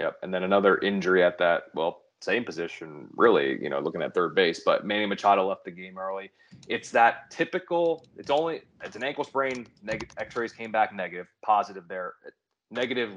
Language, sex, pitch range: English, male, 95-115 Hz